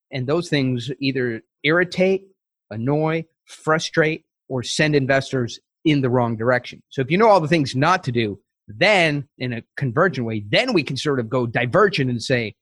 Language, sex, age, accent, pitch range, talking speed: English, male, 30-49, American, 120-155 Hz, 180 wpm